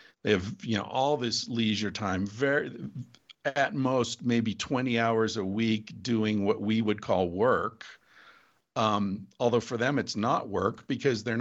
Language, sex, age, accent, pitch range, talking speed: English, male, 50-69, American, 110-135 Hz, 165 wpm